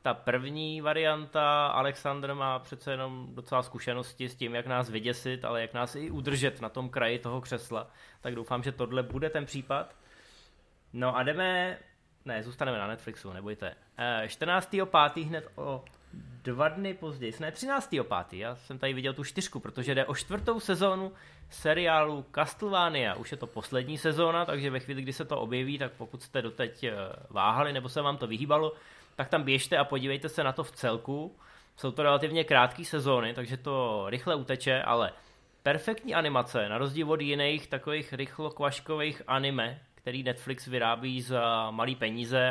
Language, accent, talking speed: Czech, native, 170 wpm